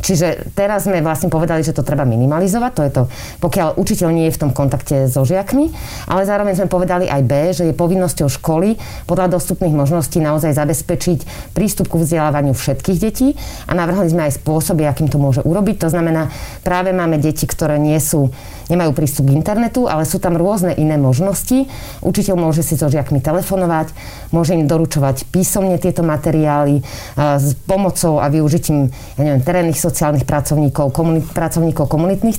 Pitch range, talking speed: 145-180 Hz, 170 wpm